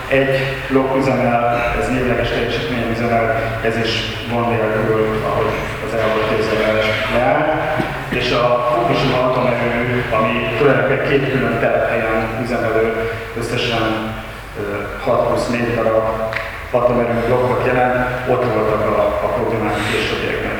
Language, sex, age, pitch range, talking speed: Hungarian, male, 30-49, 110-125 Hz, 125 wpm